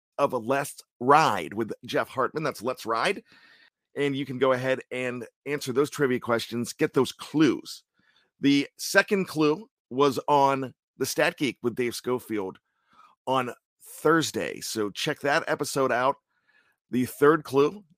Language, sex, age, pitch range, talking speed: English, male, 50-69, 125-155 Hz, 145 wpm